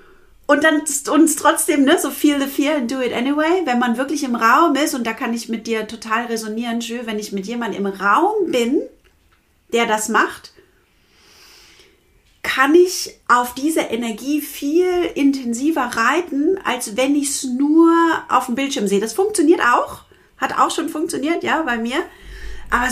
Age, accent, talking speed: 40-59, German, 175 wpm